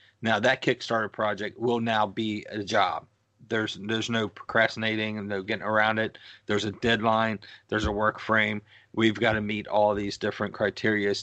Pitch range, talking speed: 100-110 Hz, 175 wpm